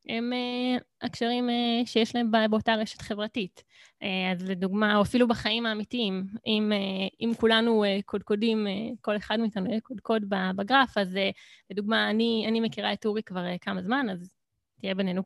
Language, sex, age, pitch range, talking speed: Hebrew, female, 20-39, 200-240 Hz, 140 wpm